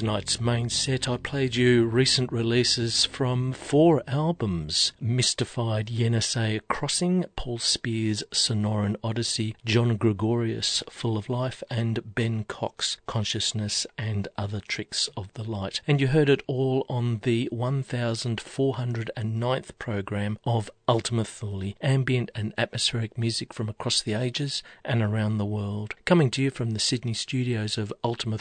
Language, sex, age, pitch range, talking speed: English, male, 40-59, 105-125 Hz, 140 wpm